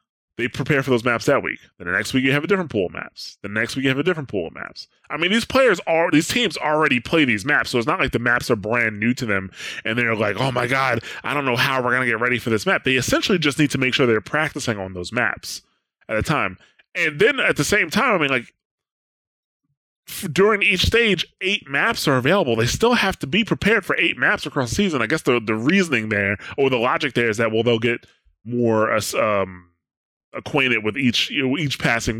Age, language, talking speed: 20-39, English, 255 wpm